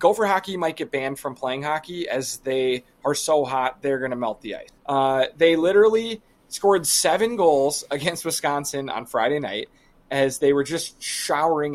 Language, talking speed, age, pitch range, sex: English, 180 wpm, 30-49, 135-170 Hz, male